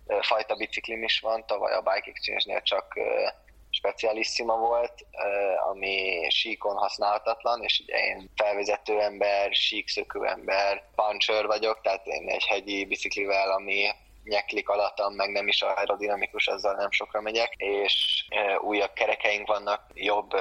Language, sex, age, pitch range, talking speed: Hungarian, male, 20-39, 100-110 Hz, 125 wpm